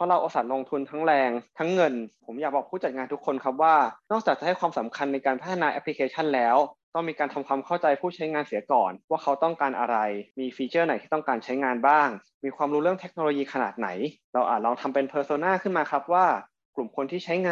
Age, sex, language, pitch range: 20-39, male, Thai, 125-160 Hz